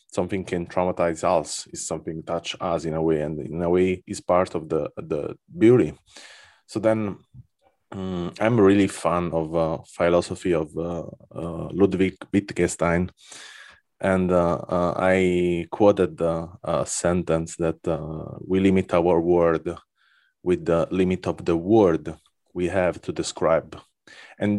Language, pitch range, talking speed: English, 85-95 Hz, 145 wpm